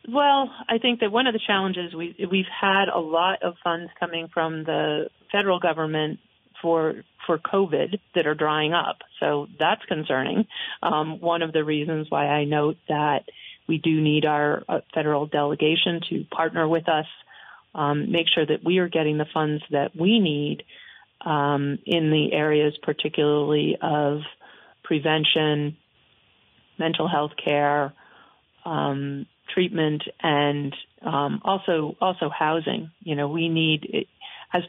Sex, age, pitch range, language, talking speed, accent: female, 40-59, 150-170 Hz, English, 145 wpm, American